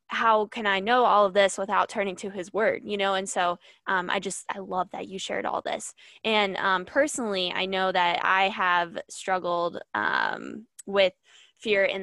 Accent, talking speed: American, 195 wpm